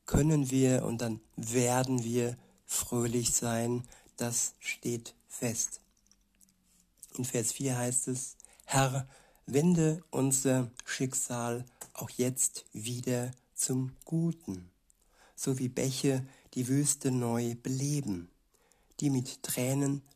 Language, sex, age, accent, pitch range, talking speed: German, male, 60-79, German, 120-135 Hz, 105 wpm